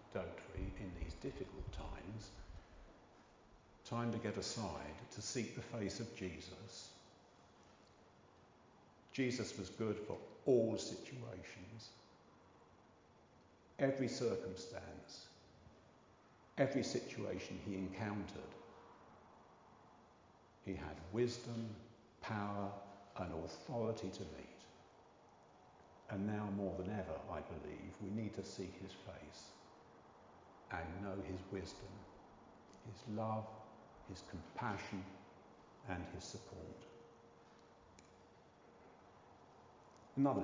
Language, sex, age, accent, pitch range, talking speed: English, male, 50-69, British, 95-115 Hz, 85 wpm